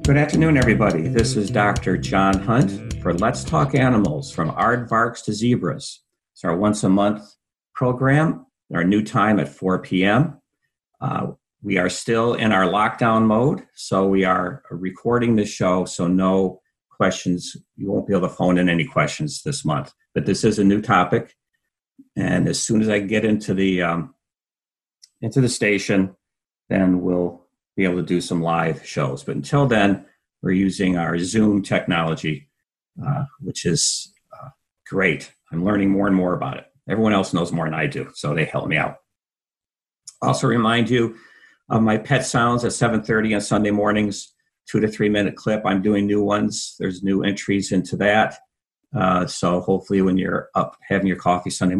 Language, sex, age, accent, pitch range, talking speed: English, male, 50-69, American, 95-115 Hz, 170 wpm